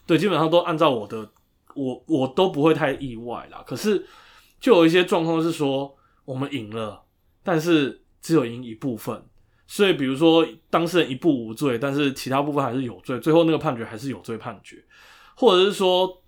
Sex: male